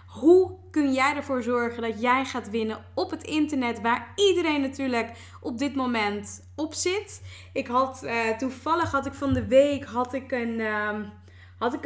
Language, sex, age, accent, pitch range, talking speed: Dutch, female, 20-39, Dutch, 225-305 Hz, 140 wpm